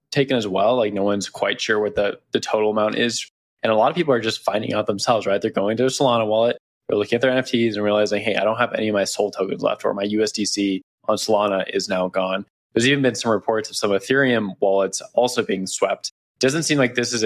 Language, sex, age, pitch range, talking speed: English, male, 20-39, 100-120 Hz, 255 wpm